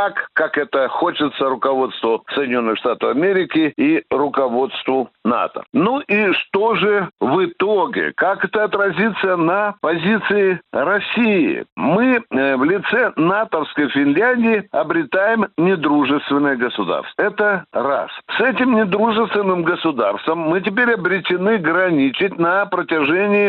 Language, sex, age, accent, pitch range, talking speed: Russian, male, 60-79, native, 155-215 Hz, 105 wpm